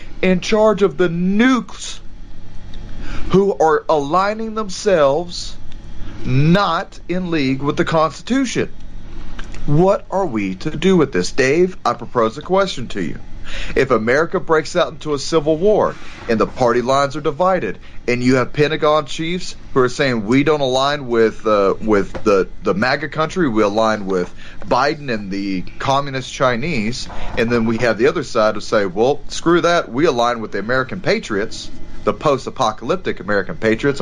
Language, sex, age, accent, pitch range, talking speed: English, male, 40-59, American, 110-175 Hz, 160 wpm